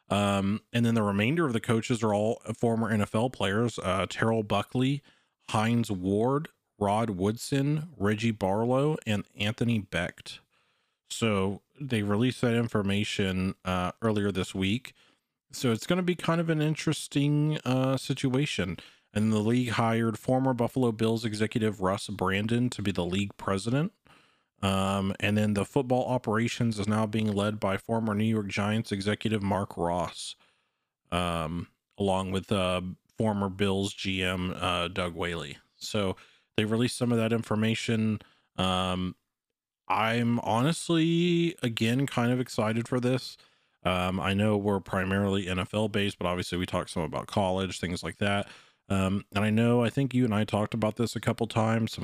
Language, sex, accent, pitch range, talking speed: English, male, American, 95-120 Hz, 160 wpm